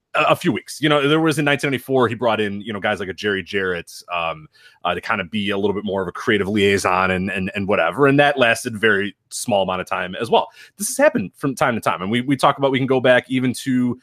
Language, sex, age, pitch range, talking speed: English, male, 30-49, 110-145 Hz, 280 wpm